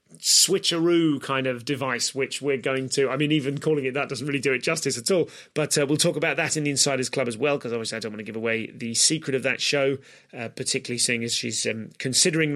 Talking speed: 255 wpm